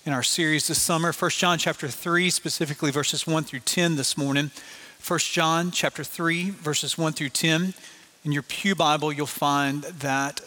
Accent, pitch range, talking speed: American, 150-190 Hz, 180 wpm